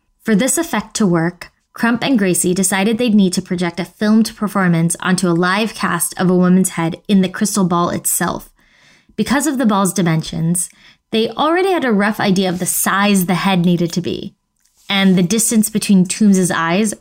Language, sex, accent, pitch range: English, female, American, 175-210 Hz